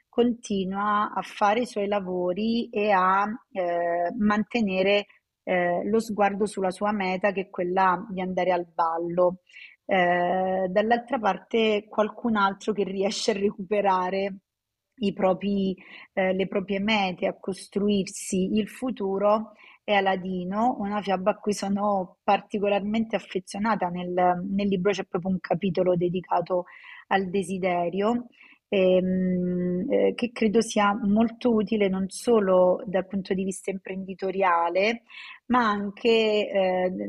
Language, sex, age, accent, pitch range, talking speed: Italian, female, 30-49, native, 185-210 Hz, 125 wpm